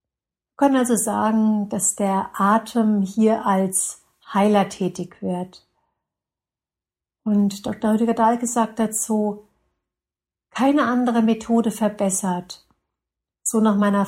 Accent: German